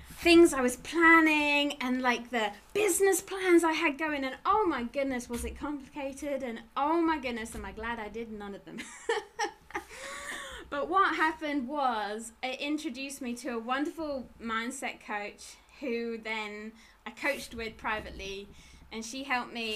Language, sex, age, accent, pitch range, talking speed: English, female, 20-39, British, 225-305 Hz, 160 wpm